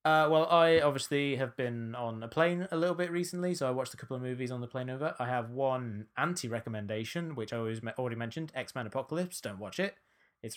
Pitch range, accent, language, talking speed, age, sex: 115-135 Hz, British, English, 220 wpm, 20-39, male